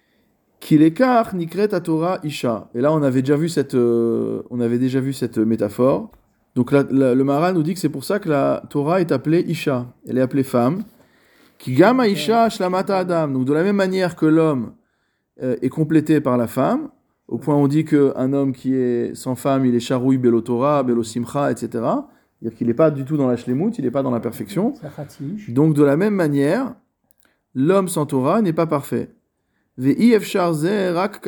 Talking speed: 185 wpm